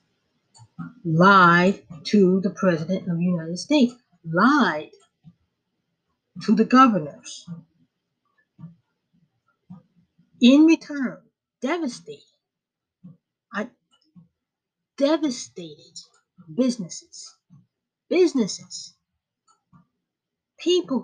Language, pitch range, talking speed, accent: English, 175-250 Hz, 55 wpm, American